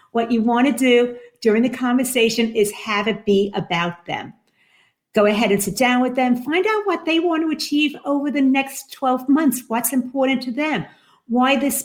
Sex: female